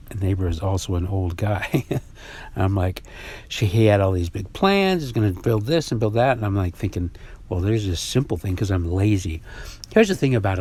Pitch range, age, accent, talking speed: 95-125 Hz, 60-79, American, 215 wpm